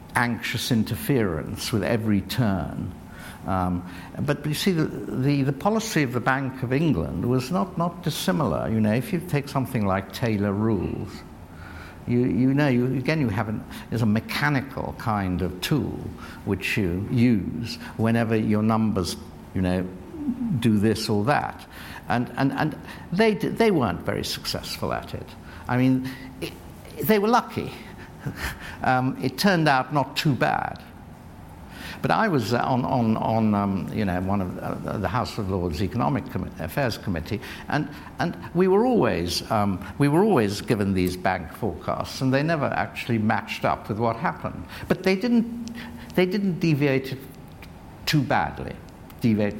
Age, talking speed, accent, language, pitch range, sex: 60-79, 160 wpm, British, English, 95-145 Hz, male